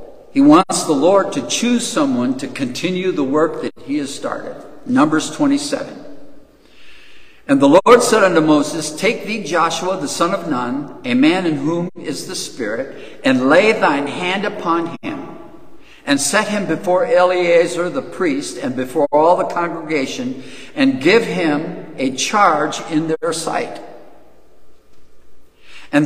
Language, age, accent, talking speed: English, 60-79, American, 145 wpm